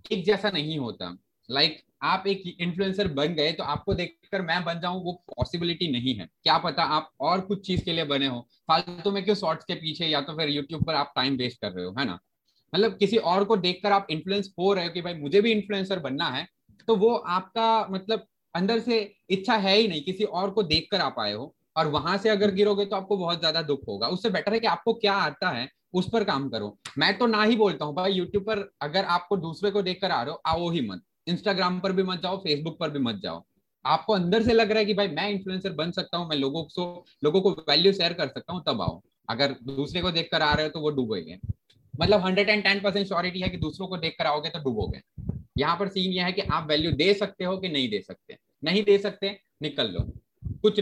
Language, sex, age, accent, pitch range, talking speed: Hindi, male, 20-39, native, 155-200 Hz, 240 wpm